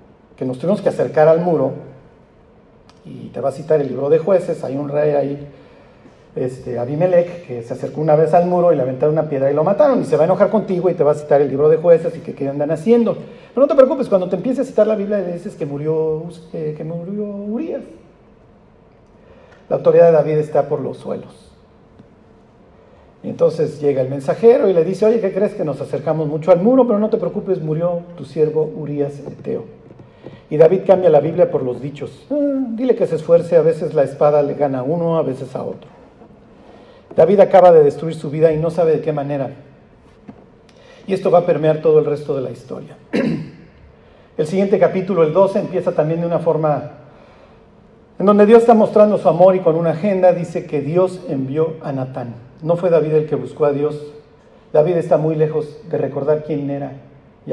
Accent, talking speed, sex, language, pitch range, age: Mexican, 210 wpm, male, Spanish, 145-195 Hz, 50-69